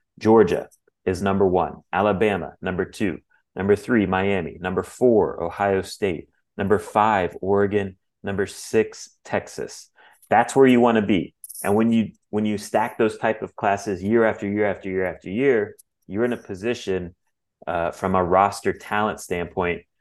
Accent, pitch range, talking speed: American, 95-115 Hz, 160 wpm